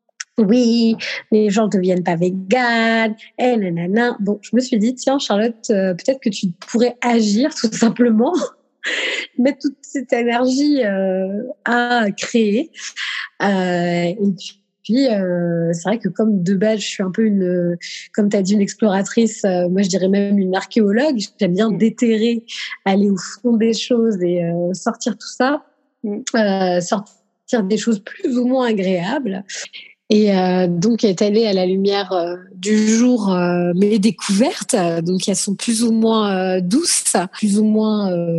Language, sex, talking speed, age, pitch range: French, female, 170 wpm, 20-39, 190-235 Hz